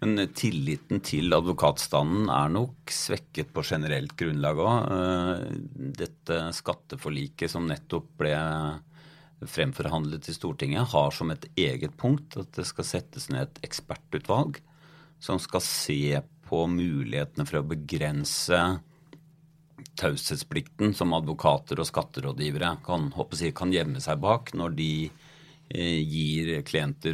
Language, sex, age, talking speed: English, male, 40-59, 120 wpm